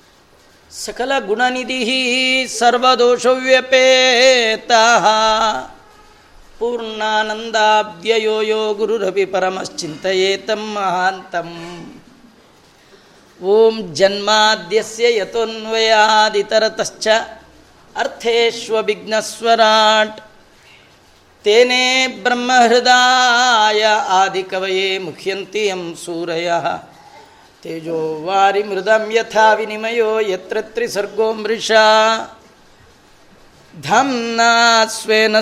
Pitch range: 195-230 Hz